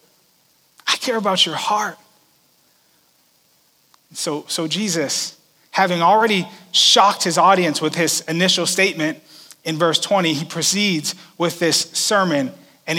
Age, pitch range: 30-49, 165-205 Hz